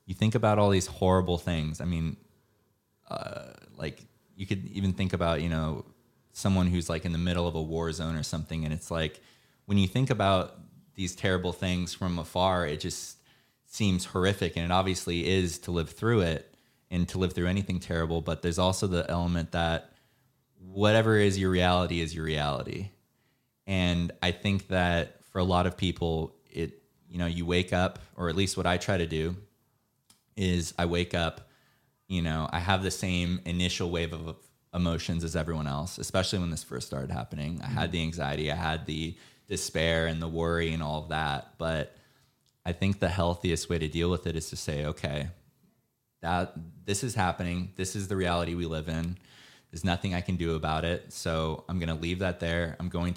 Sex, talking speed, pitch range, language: male, 195 wpm, 80-95 Hz, English